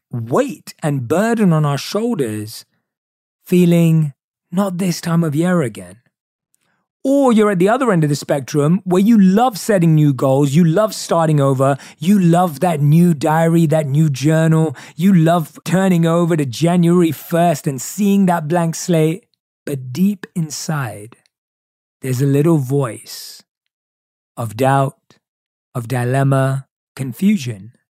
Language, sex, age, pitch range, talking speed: English, male, 30-49, 135-185 Hz, 140 wpm